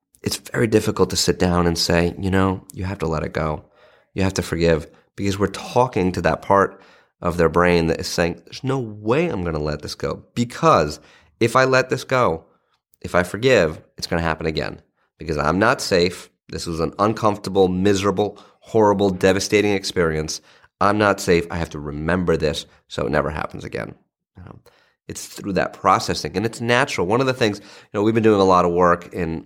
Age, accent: 30-49, American